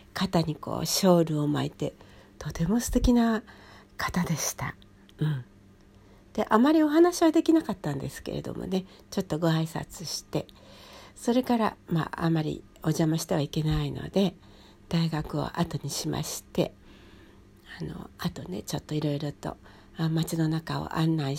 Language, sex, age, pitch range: Japanese, female, 60-79, 145-205 Hz